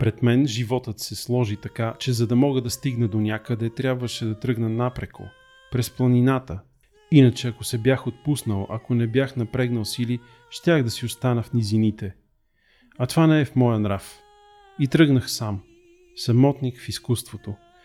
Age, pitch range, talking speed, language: 40-59, 110-135 Hz, 165 wpm, Bulgarian